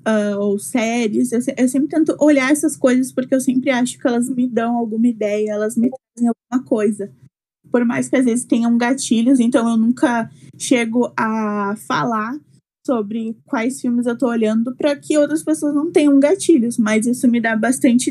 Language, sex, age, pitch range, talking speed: Portuguese, female, 20-39, 235-275 Hz, 185 wpm